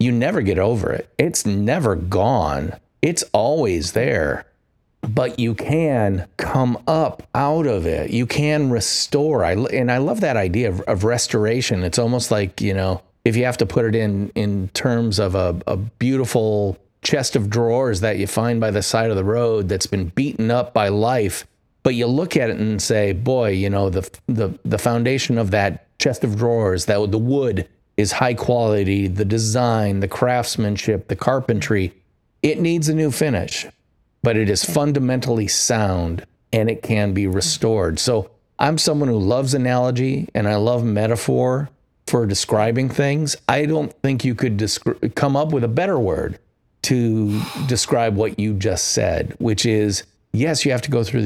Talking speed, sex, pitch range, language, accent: 175 wpm, male, 105-125 Hz, English, American